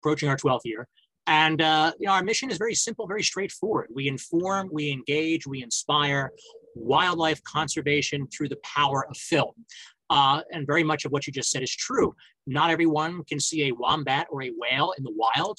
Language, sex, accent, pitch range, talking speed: English, male, American, 130-155 Hz, 190 wpm